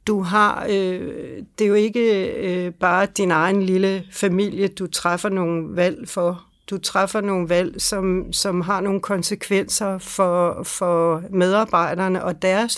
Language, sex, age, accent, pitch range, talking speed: Danish, female, 60-79, native, 180-210 Hz, 140 wpm